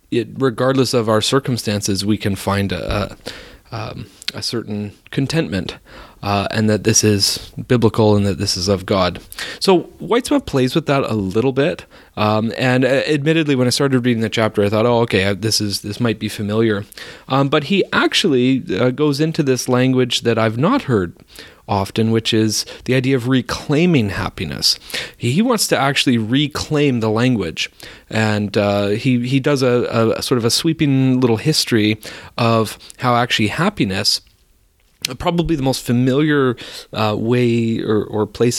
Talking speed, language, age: 175 wpm, English, 30-49